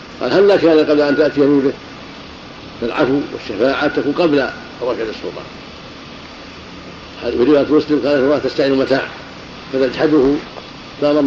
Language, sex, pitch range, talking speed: Arabic, male, 130-155 Hz, 120 wpm